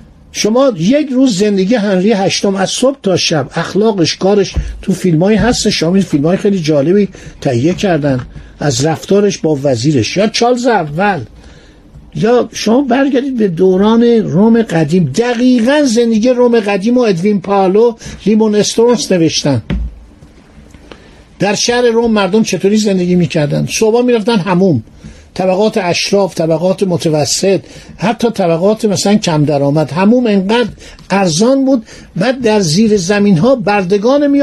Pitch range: 175-230 Hz